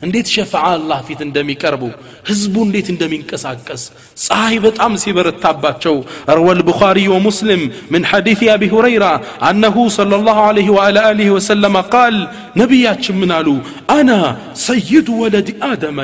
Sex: male